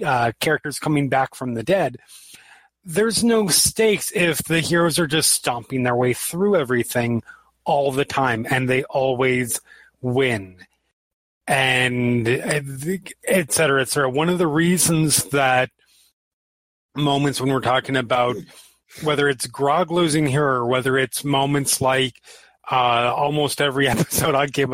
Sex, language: male, English